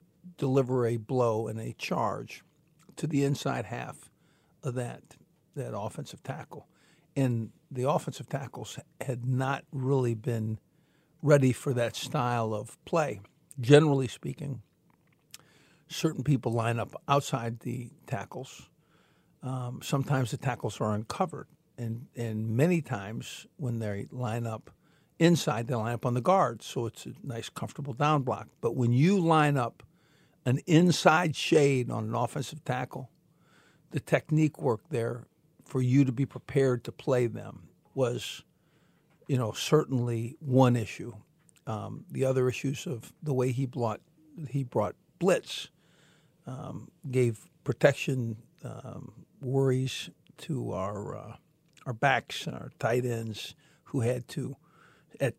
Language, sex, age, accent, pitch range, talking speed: English, male, 50-69, American, 120-150 Hz, 135 wpm